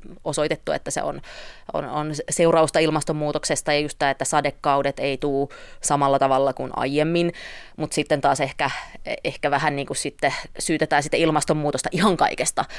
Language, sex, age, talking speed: Finnish, female, 20-39, 155 wpm